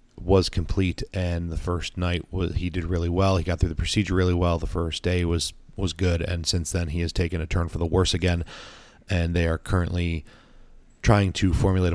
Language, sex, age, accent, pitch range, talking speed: English, male, 30-49, American, 85-95 Hz, 210 wpm